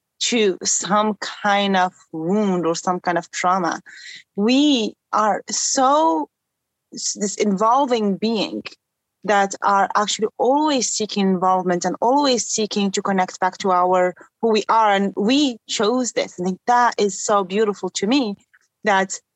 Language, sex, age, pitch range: English, female, 30-49, 185-230 Hz